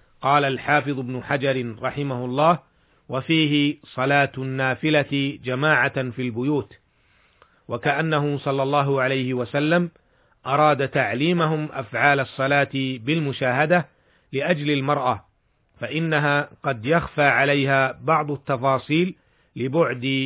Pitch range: 130-155 Hz